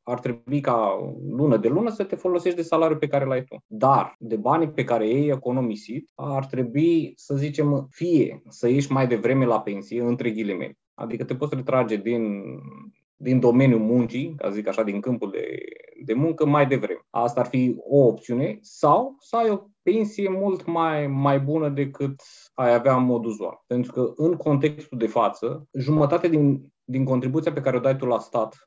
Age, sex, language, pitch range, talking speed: 20-39, male, Romanian, 120-155 Hz, 190 wpm